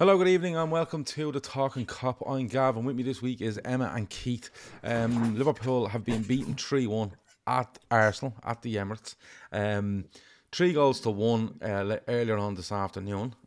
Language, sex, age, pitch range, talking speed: English, male, 30-49, 95-120 Hz, 185 wpm